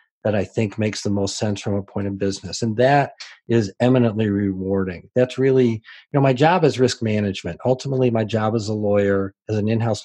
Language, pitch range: English, 100-125 Hz